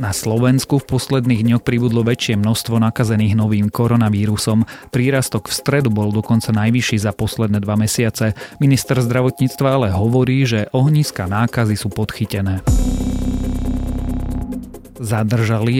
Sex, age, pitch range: male, 30-49, 105-130 Hz